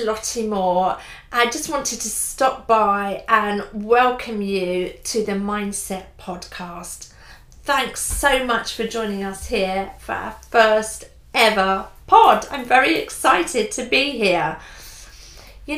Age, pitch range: 40-59, 200-250 Hz